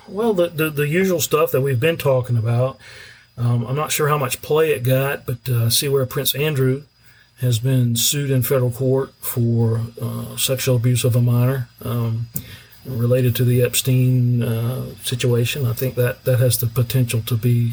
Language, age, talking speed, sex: English, 40-59, 190 wpm, male